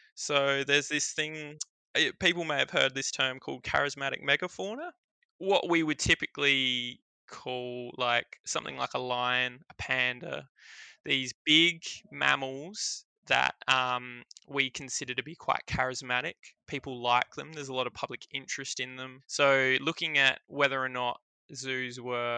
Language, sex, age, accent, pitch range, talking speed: English, male, 20-39, Australian, 125-145 Hz, 145 wpm